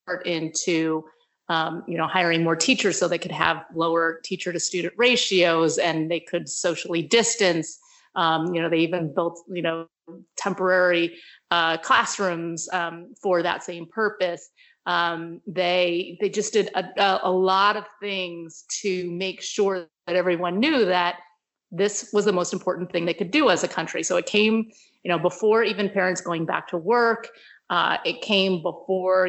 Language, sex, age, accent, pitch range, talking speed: English, female, 30-49, American, 170-195 Hz, 170 wpm